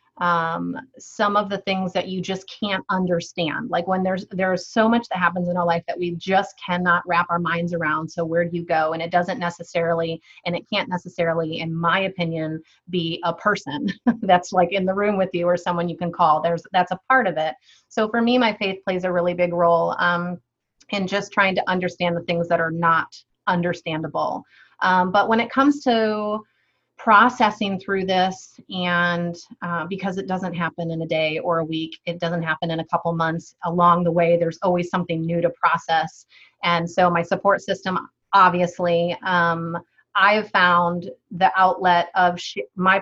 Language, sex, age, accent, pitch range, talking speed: English, female, 30-49, American, 170-190 Hz, 195 wpm